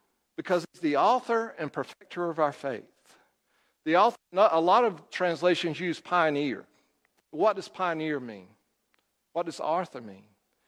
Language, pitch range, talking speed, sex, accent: English, 135-180 Hz, 145 wpm, male, American